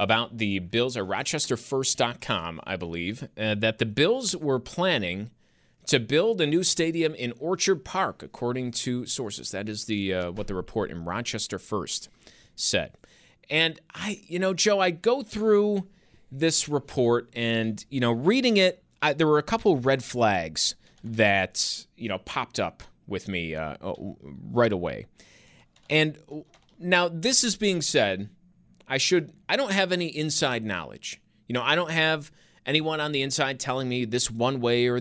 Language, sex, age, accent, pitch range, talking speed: English, male, 30-49, American, 110-165 Hz, 165 wpm